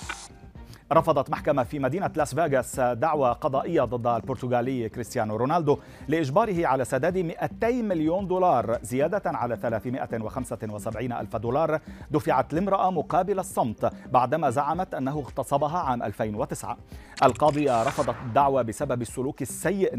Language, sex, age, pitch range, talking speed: Arabic, male, 40-59, 120-155 Hz, 115 wpm